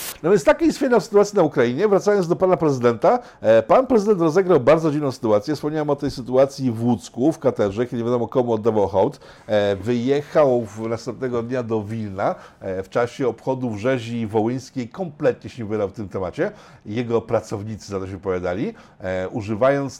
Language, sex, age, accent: Polish, male, 50-69, native